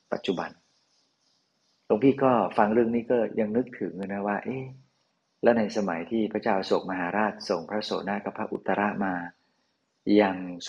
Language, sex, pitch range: Thai, male, 95-110 Hz